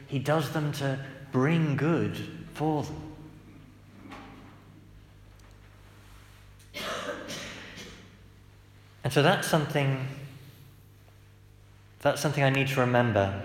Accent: British